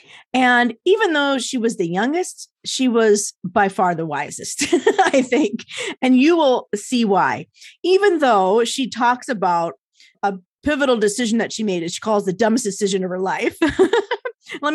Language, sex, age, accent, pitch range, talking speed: English, female, 30-49, American, 185-265 Hz, 165 wpm